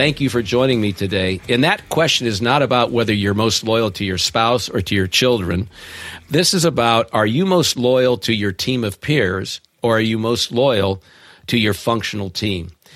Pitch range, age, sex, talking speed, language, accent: 100-125 Hz, 50-69, male, 205 wpm, English, American